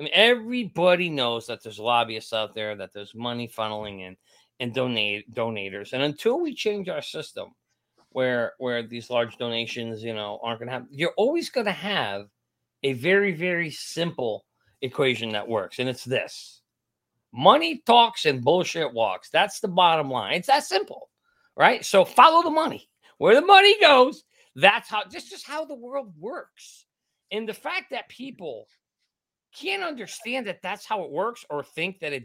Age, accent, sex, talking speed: 40-59, American, male, 175 wpm